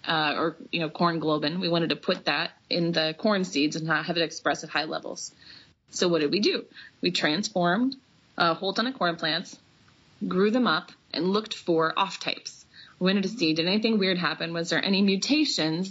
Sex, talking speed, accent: female, 210 wpm, American